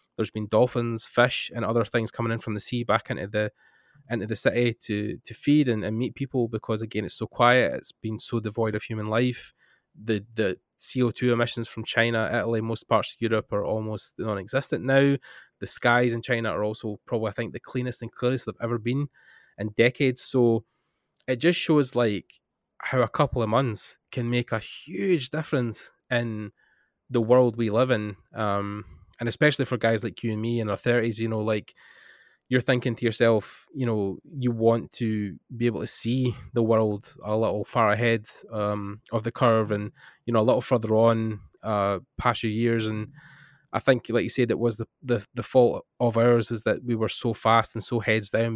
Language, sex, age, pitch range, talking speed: English, male, 20-39, 110-120 Hz, 205 wpm